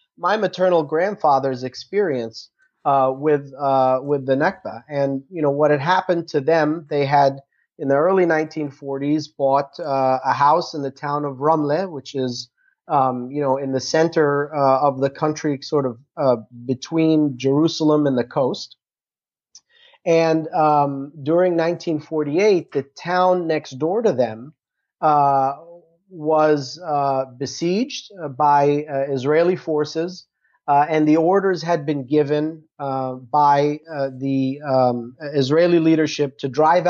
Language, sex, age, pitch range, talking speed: English, male, 30-49, 135-160 Hz, 140 wpm